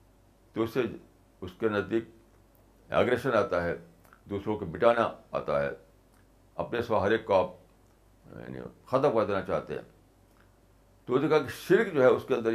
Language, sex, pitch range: Urdu, male, 95-120 Hz